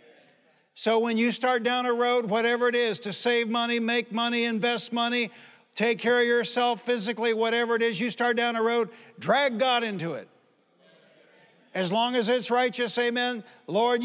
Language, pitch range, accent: English, 220-245 Hz, American